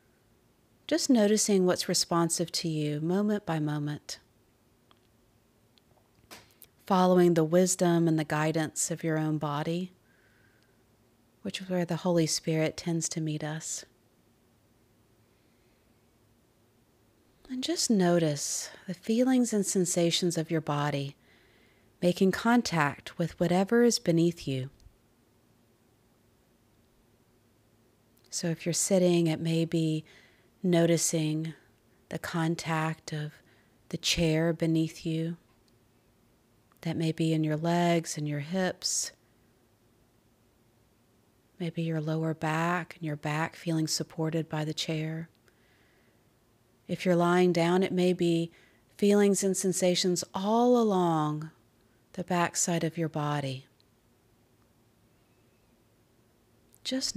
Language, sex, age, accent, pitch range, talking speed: English, female, 40-59, American, 120-175 Hz, 105 wpm